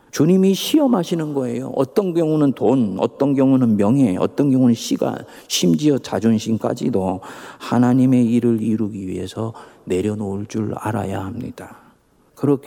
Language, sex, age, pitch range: Korean, male, 40-59, 90-120 Hz